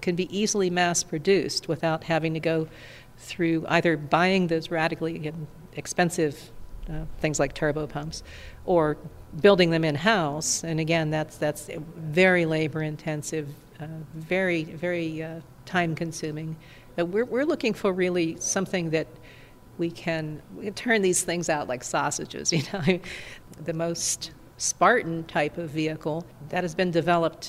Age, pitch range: 50-69, 155-175 Hz